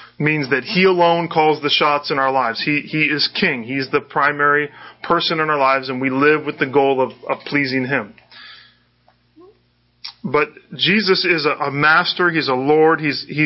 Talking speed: 185 wpm